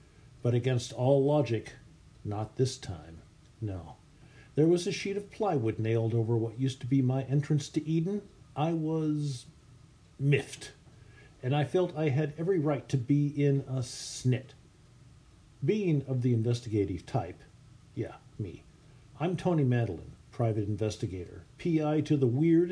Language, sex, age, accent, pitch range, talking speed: English, male, 50-69, American, 120-150 Hz, 145 wpm